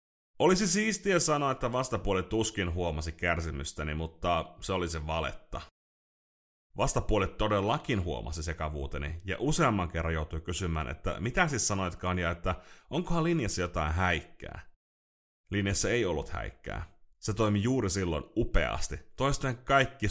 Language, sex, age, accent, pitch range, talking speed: Finnish, male, 30-49, native, 80-105 Hz, 130 wpm